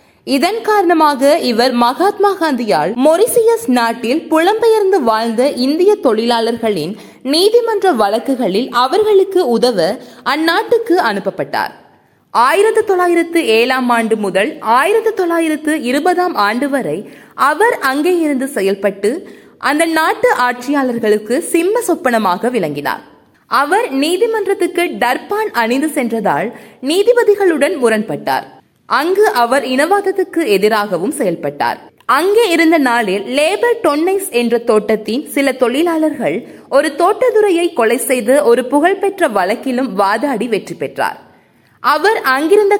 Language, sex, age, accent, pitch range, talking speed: Tamil, female, 20-39, native, 240-365 Hz, 90 wpm